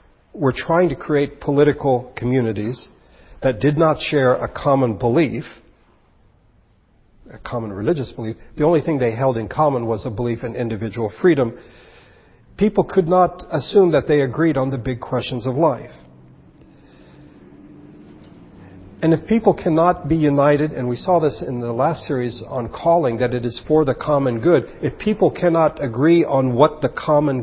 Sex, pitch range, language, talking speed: male, 120-155 Hz, English, 160 wpm